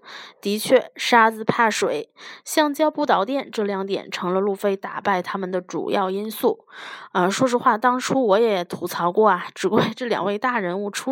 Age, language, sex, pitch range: 20-39, Chinese, female, 195-275 Hz